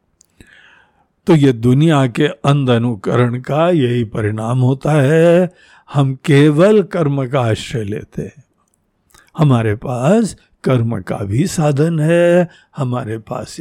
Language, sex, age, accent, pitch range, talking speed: Hindi, male, 50-69, native, 125-185 Hz, 115 wpm